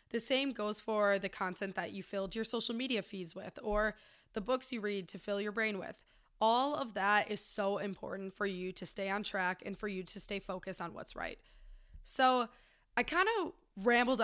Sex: female